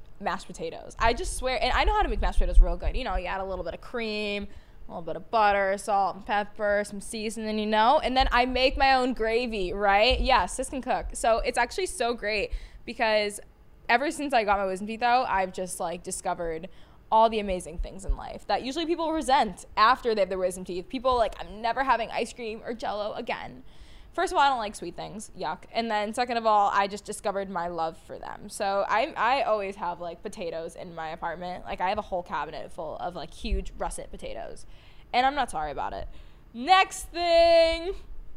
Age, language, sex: 10-29, English, female